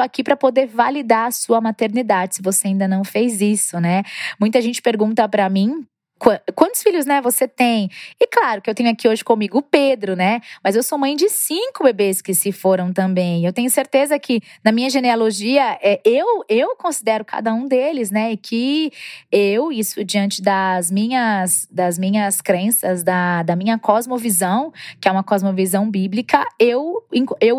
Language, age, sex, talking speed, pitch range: Portuguese, 20-39, female, 175 wpm, 190-265 Hz